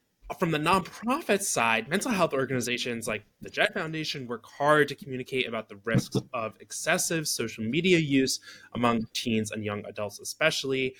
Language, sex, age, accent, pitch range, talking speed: English, male, 20-39, American, 110-140 Hz, 160 wpm